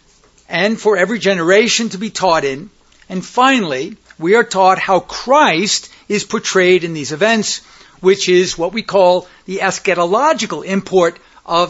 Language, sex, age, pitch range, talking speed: English, male, 60-79, 180-225 Hz, 150 wpm